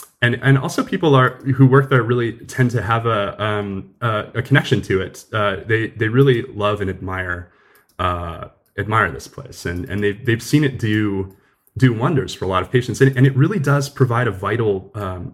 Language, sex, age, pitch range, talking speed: English, male, 20-39, 95-120 Hz, 205 wpm